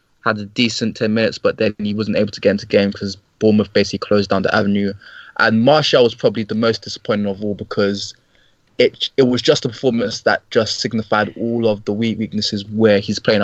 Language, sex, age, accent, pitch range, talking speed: English, male, 20-39, British, 105-125 Hz, 220 wpm